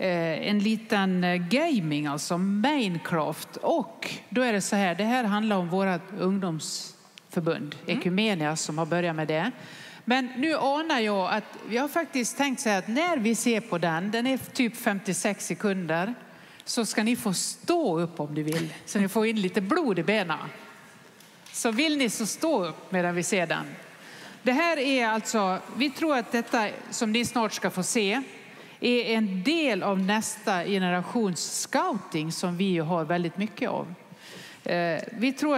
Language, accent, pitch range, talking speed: English, Swedish, 180-230 Hz, 170 wpm